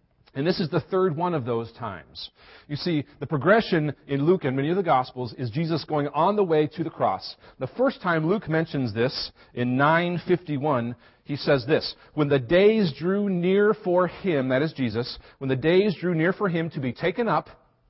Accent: American